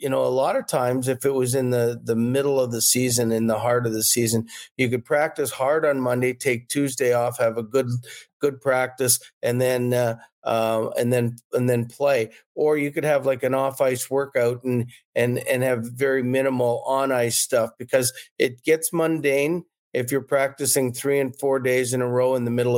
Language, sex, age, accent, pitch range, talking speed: English, male, 50-69, American, 120-140 Hz, 210 wpm